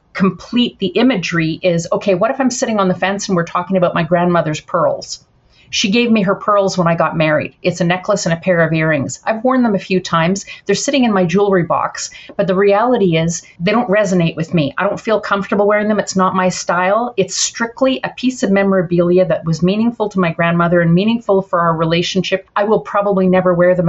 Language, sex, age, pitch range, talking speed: English, female, 40-59, 180-215 Hz, 225 wpm